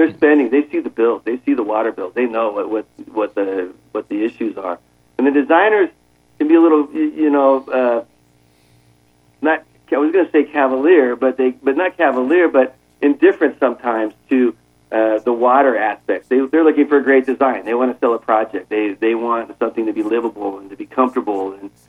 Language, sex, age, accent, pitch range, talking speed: English, male, 40-59, American, 100-135 Hz, 210 wpm